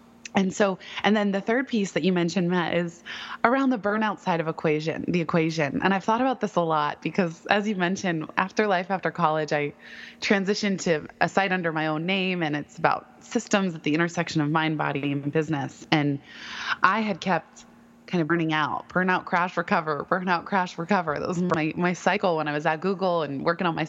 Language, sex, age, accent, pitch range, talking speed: English, female, 20-39, American, 160-205 Hz, 210 wpm